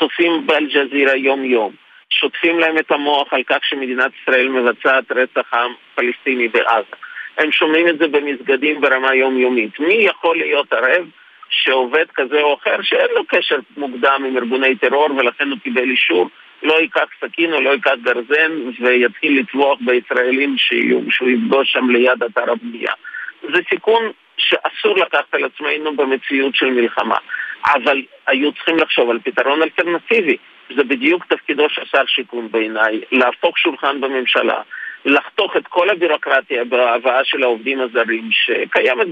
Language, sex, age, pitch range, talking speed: Hebrew, male, 50-69, 125-180 Hz, 145 wpm